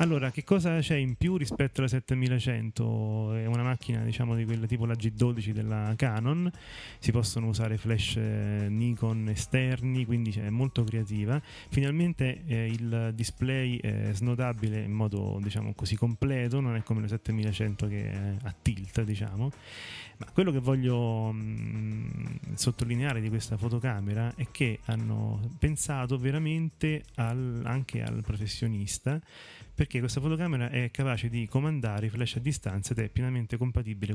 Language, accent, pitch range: Italian, native, 110-130 Hz